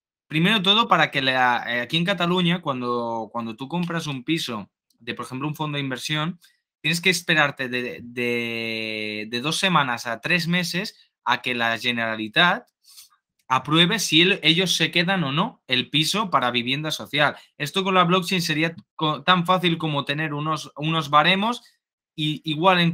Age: 20-39